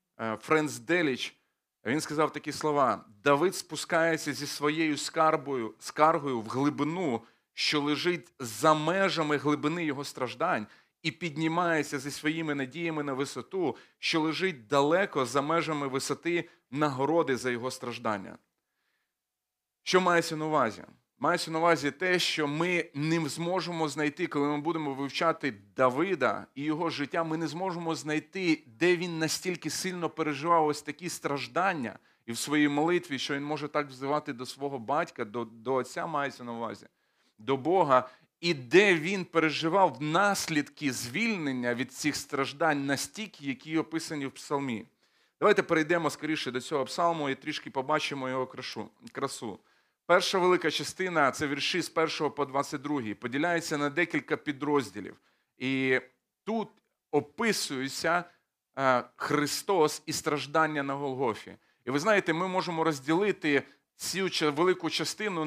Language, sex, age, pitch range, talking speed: Ukrainian, male, 30-49, 140-165 Hz, 135 wpm